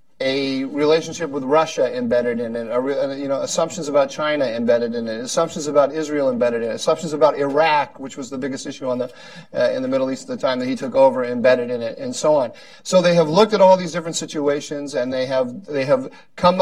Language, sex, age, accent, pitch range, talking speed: English, male, 40-59, American, 135-185 Hz, 235 wpm